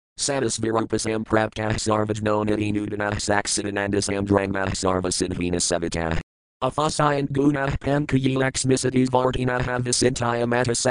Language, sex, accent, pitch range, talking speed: English, male, American, 90-115 Hz, 105 wpm